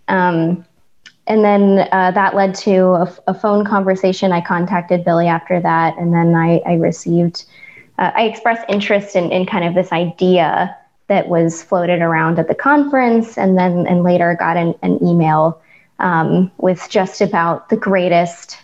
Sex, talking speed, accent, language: female, 170 wpm, American, English